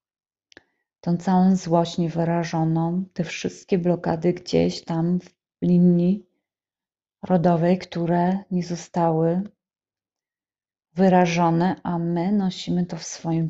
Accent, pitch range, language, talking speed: native, 170-200 Hz, Polish, 100 wpm